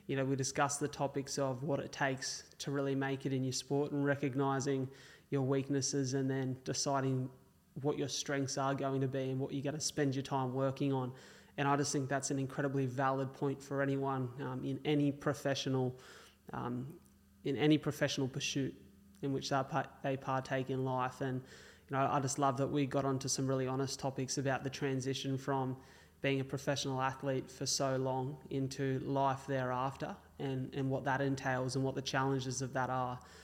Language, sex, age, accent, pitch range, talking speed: English, male, 20-39, Australian, 130-140 Hz, 190 wpm